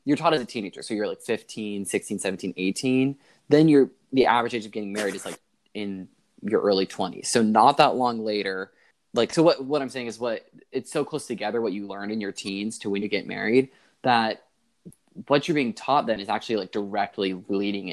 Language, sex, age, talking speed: English, male, 20-39, 220 wpm